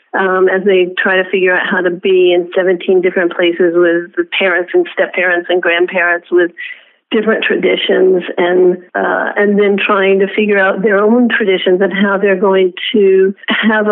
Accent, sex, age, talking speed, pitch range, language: American, female, 50-69, 180 wpm, 190-225 Hz, English